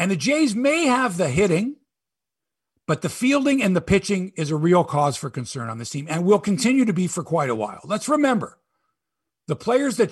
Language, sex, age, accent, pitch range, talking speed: English, male, 50-69, American, 155-215 Hz, 215 wpm